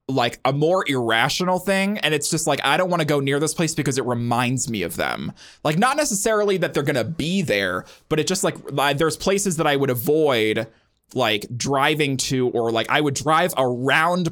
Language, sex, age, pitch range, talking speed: English, male, 20-39, 120-160 Hz, 210 wpm